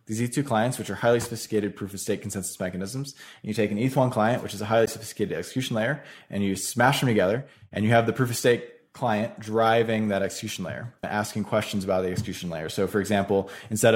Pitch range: 100-120 Hz